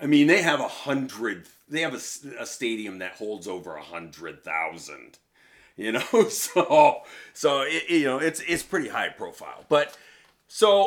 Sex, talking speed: male, 170 wpm